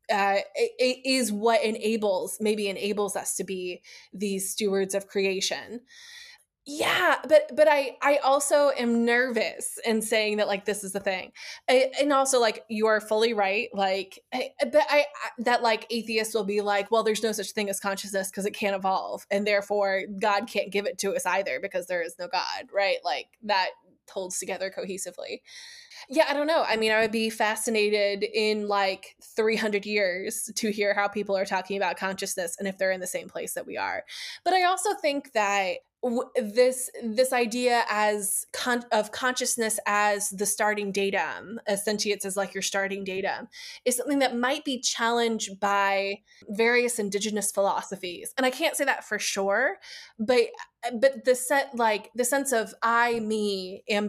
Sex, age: female, 20-39